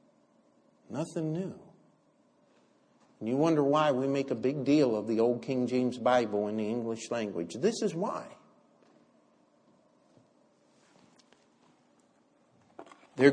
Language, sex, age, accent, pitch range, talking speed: English, male, 50-69, American, 125-160 Hz, 115 wpm